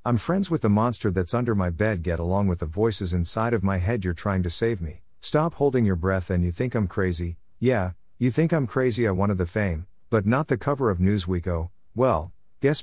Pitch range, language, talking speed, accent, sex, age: 90-115 Hz, English, 235 wpm, American, male, 50-69